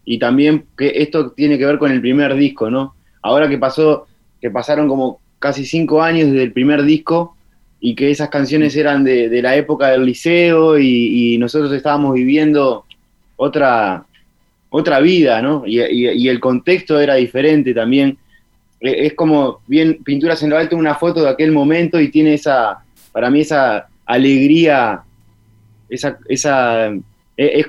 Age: 20-39